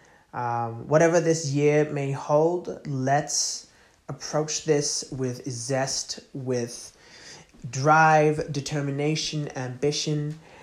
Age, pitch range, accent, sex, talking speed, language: 20-39, 130-155 Hz, American, male, 85 wpm, English